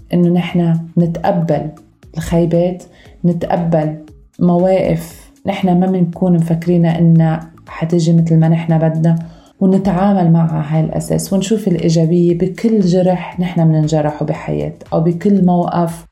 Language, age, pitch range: Arabic, 30-49, 165-180 Hz